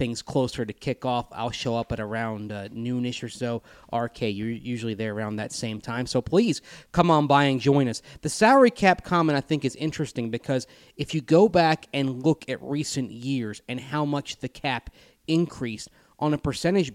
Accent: American